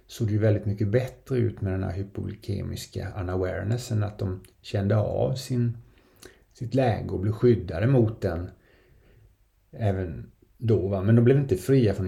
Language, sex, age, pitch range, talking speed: Swedish, male, 30-49, 95-115 Hz, 165 wpm